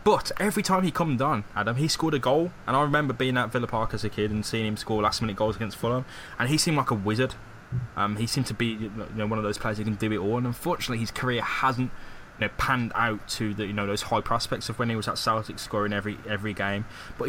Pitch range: 105-125 Hz